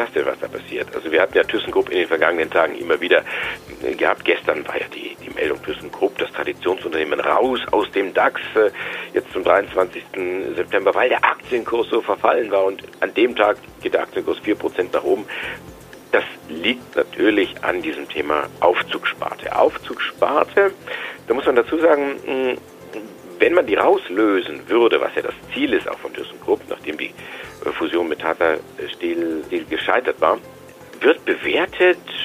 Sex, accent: male, German